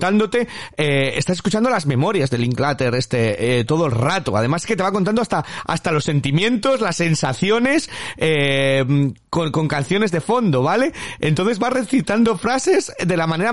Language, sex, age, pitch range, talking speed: Spanish, male, 40-59, 135-205 Hz, 175 wpm